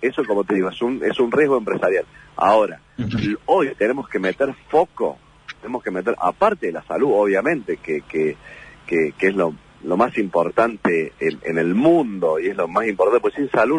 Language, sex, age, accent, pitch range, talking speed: Spanish, male, 40-59, Argentinian, 115-180 Hz, 195 wpm